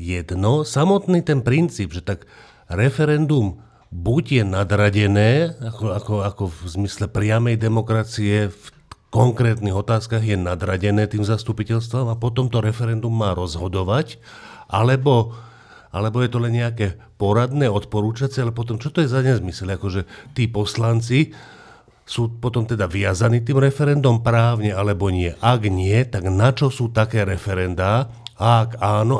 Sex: male